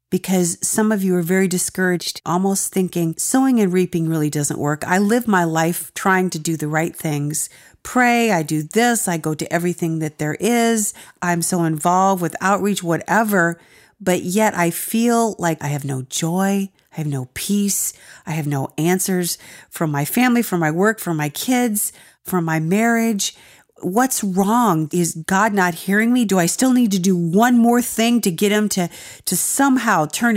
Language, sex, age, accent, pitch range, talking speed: English, female, 40-59, American, 165-210 Hz, 185 wpm